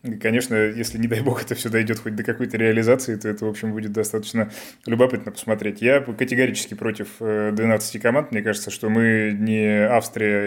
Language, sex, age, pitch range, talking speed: Russian, male, 20-39, 105-120 Hz, 180 wpm